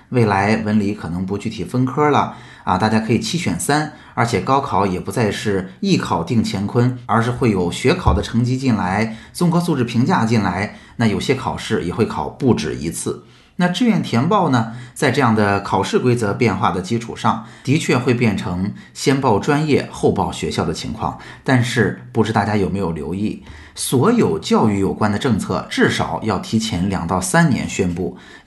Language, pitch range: Chinese, 100-130 Hz